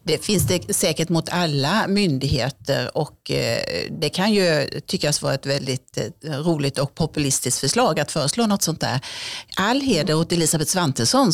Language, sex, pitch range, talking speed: Swedish, female, 140-175 Hz, 150 wpm